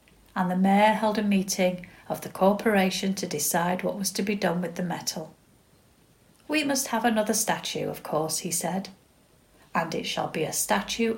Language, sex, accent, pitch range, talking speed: English, female, British, 170-210 Hz, 185 wpm